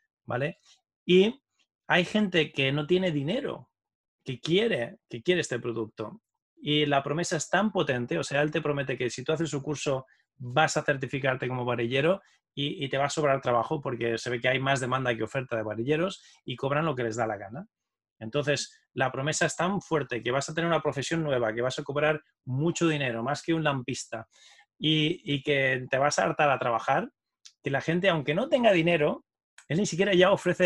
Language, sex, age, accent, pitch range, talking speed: Spanish, male, 20-39, Spanish, 135-165 Hz, 205 wpm